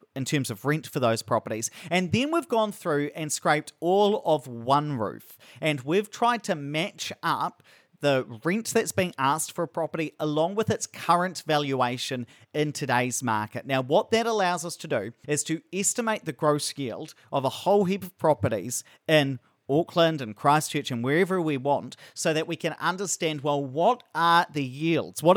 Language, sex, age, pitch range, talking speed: English, male, 30-49, 140-180 Hz, 185 wpm